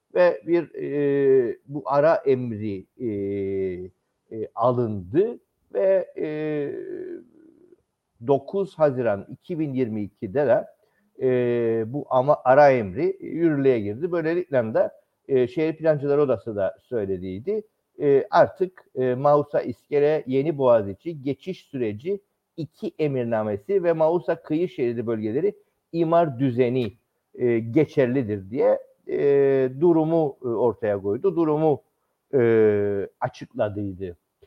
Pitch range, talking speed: 115-185 Hz, 100 wpm